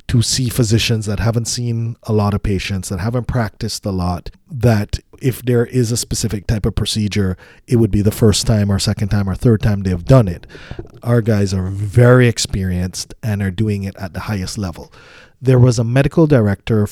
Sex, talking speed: male, 205 wpm